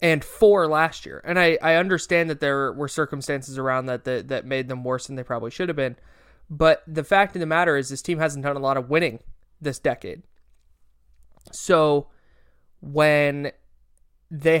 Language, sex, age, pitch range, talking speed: English, male, 20-39, 135-170 Hz, 185 wpm